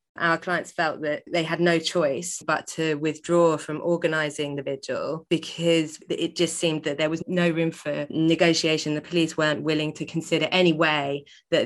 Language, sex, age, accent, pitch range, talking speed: English, female, 20-39, British, 150-170 Hz, 180 wpm